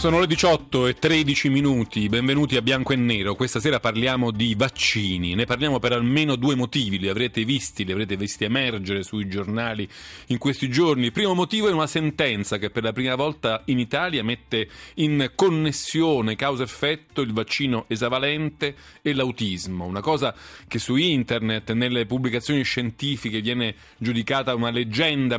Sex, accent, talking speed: male, native, 165 wpm